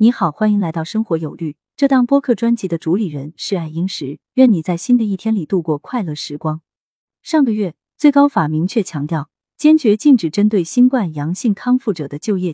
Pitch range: 160-230 Hz